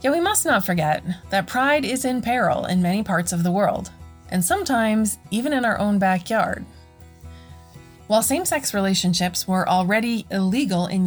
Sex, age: female, 20-39